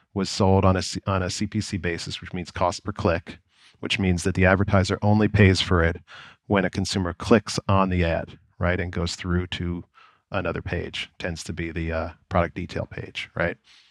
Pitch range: 90-100 Hz